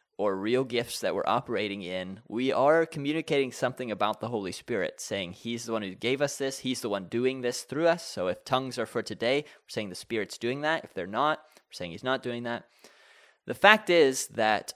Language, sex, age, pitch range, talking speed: English, male, 20-39, 105-130 Hz, 225 wpm